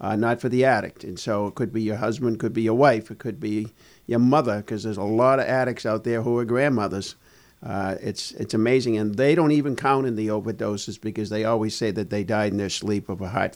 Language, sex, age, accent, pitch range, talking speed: English, male, 50-69, American, 110-130 Hz, 250 wpm